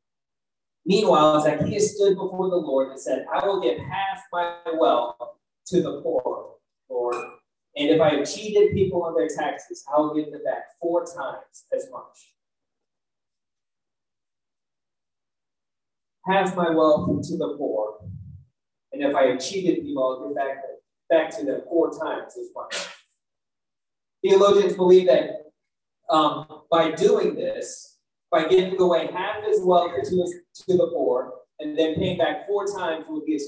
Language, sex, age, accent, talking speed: English, male, 30-49, American, 150 wpm